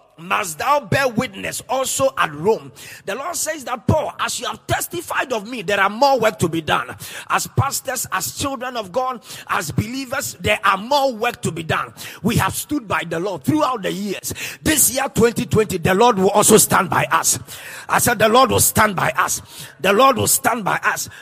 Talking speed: 205 wpm